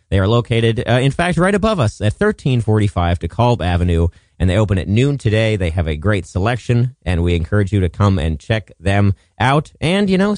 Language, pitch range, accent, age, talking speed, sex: English, 90-135 Hz, American, 30-49, 215 wpm, male